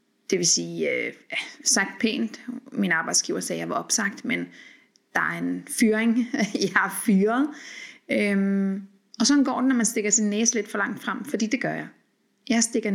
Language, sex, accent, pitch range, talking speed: Danish, female, native, 195-240 Hz, 180 wpm